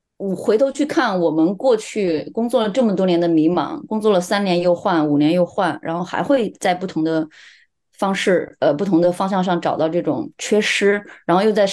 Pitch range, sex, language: 165-215 Hz, female, Chinese